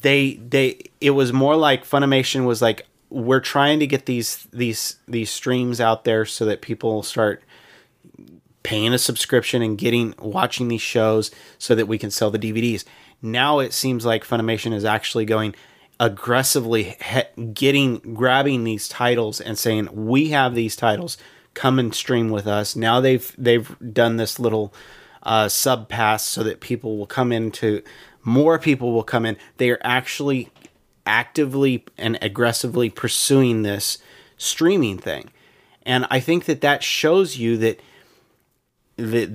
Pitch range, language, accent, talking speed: 110-130 Hz, English, American, 155 wpm